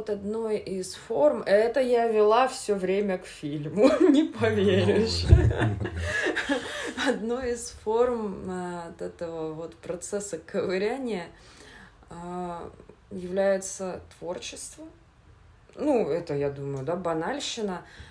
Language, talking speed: Russian, 90 wpm